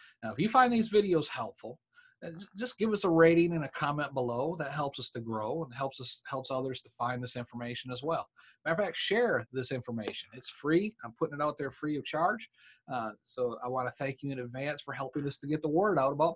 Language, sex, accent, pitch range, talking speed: English, male, American, 140-180 Hz, 240 wpm